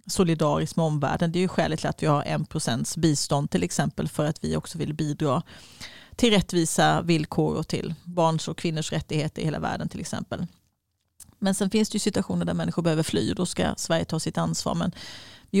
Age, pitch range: 30-49, 160-195 Hz